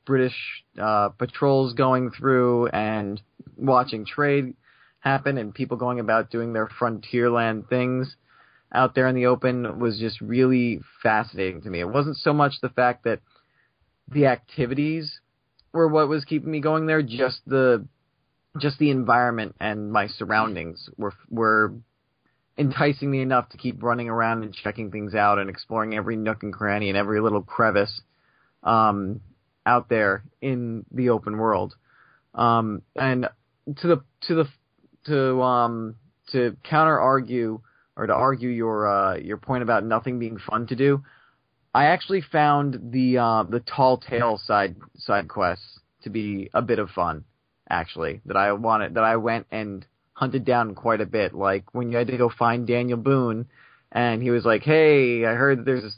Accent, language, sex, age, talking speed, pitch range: American, English, male, 20-39, 165 wpm, 110-130 Hz